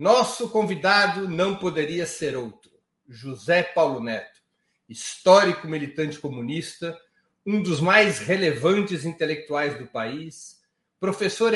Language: Portuguese